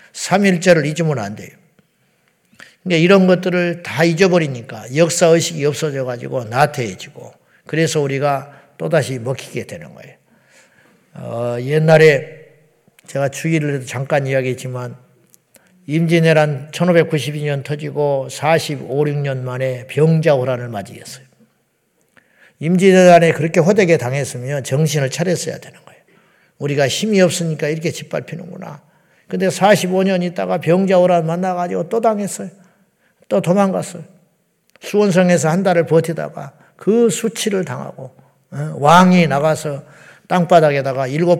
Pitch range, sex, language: 135-175 Hz, male, Korean